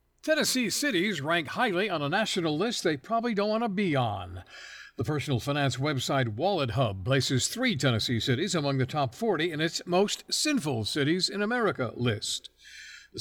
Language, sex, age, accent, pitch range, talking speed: English, male, 50-69, American, 125-180 Hz, 170 wpm